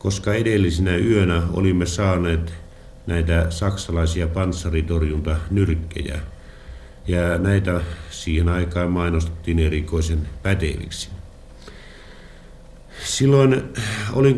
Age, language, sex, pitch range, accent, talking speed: 50-69, Finnish, male, 85-105 Hz, native, 75 wpm